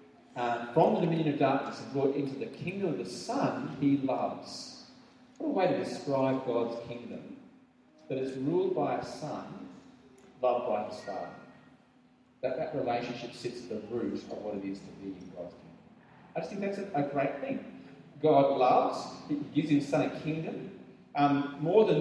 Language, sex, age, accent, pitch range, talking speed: English, male, 40-59, Australian, 125-185 Hz, 185 wpm